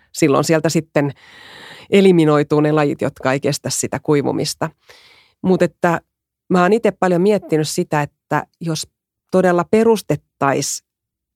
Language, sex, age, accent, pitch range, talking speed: Finnish, female, 30-49, native, 145-190 Hz, 110 wpm